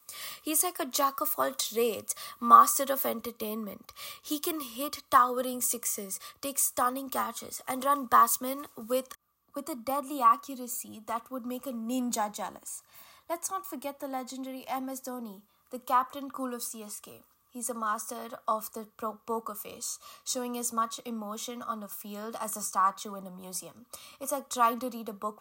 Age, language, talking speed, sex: 20-39, English, 165 wpm, female